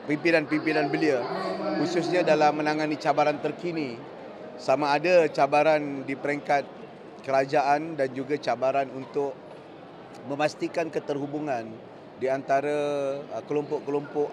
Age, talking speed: 30-49, 100 wpm